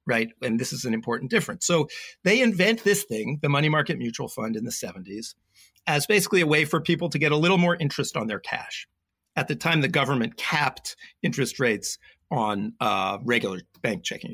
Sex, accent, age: male, American, 50-69